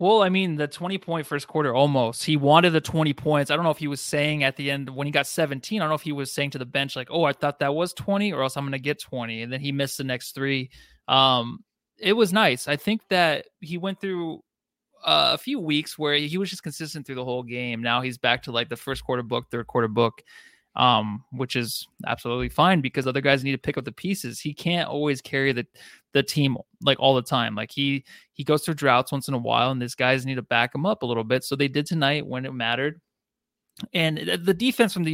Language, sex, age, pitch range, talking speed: English, male, 20-39, 130-160 Hz, 260 wpm